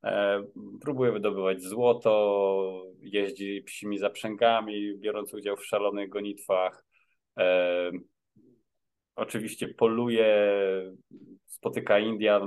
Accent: native